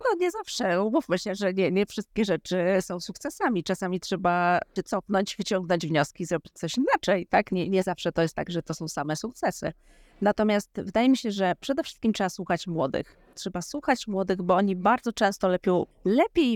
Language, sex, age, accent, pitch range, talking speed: Polish, female, 30-49, native, 185-225 Hz, 185 wpm